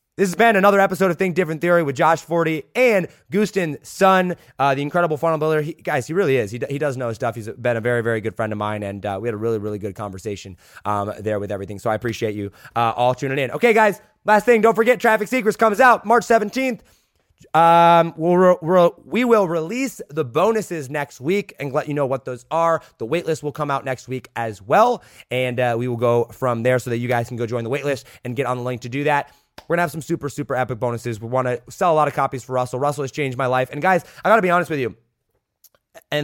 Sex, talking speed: male, 260 wpm